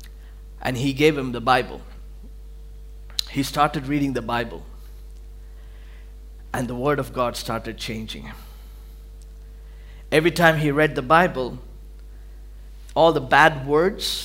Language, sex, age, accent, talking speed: English, male, 50-69, Indian, 120 wpm